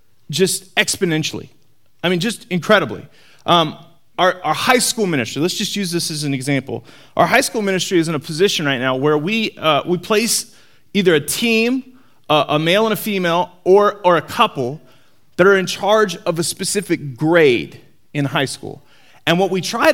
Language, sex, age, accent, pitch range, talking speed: English, male, 30-49, American, 145-220 Hz, 185 wpm